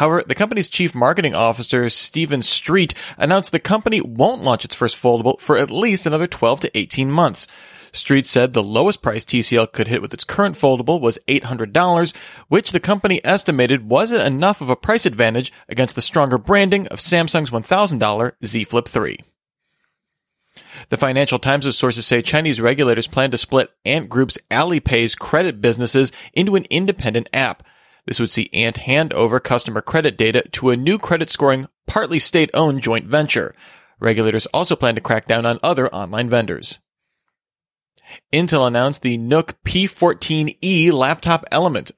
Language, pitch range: English, 120-165 Hz